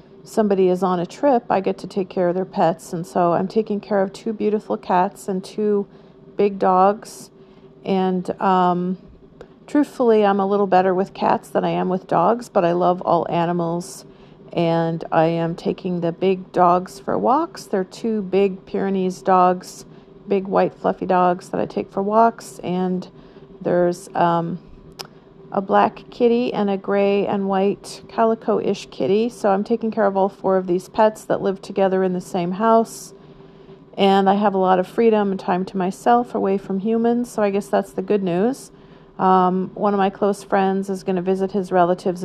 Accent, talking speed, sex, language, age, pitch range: American, 185 wpm, female, English, 50-69, 180-200 Hz